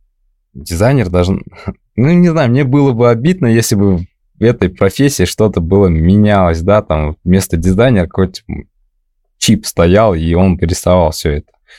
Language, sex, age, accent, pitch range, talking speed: Russian, male, 20-39, native, 90-120 Hz, 150 wpm